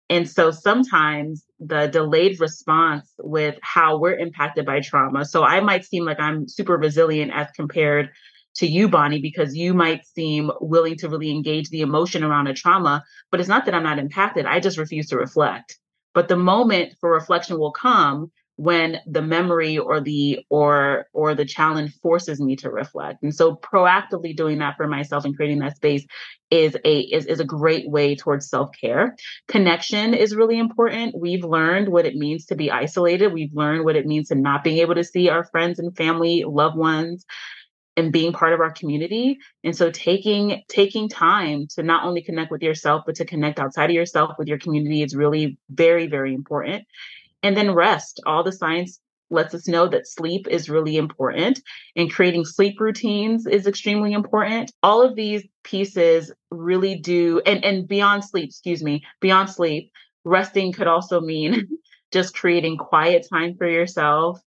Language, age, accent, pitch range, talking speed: English, 30-49, American, 155-185 Hz, 180 wpm